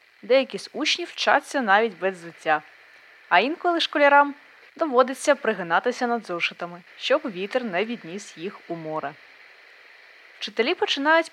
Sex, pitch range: female, 190-265 Hz